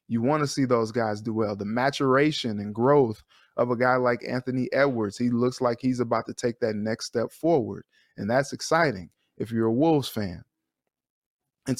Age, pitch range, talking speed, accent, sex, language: 20-39, 120-145 Hz, 195 wpm, American, male, English